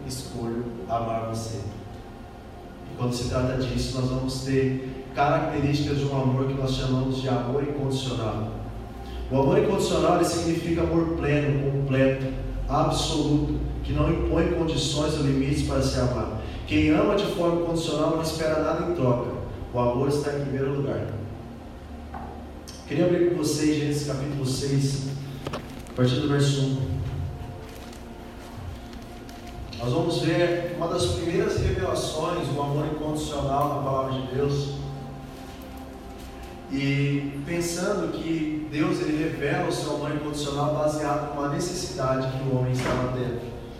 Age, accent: 20-39, Brazilian